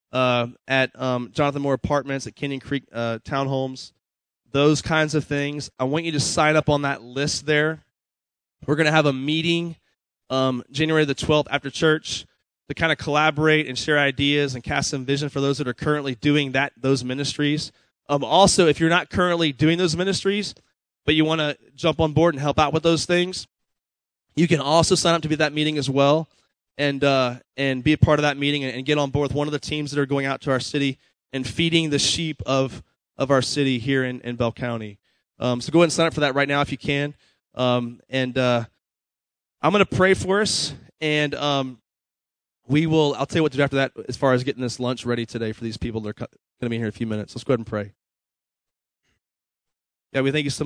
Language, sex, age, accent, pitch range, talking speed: English, male, 20-39, American, 125-150 Hz, 235 wpm